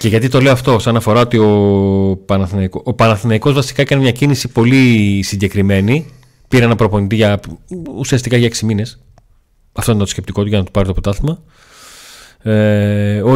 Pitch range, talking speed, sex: 100-130 Hz, 175 wpm, male